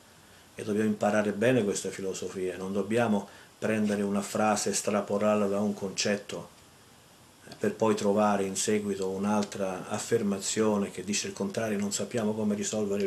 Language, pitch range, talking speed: Italian, 100-110 Hz, 140 wpm